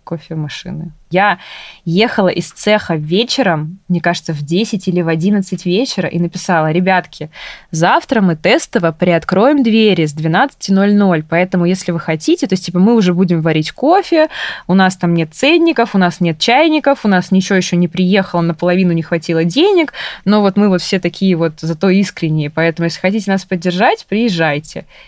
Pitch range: 170-205 Hz